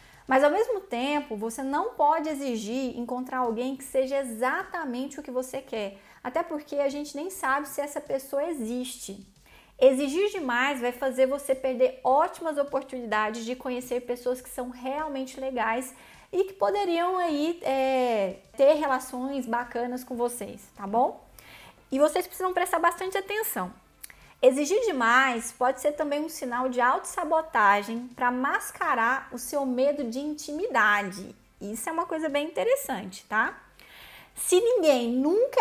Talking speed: 145 wpm